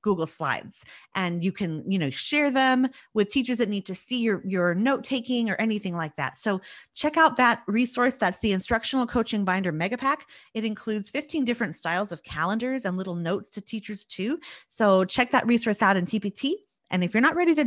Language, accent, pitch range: English, American, 190-255 Hz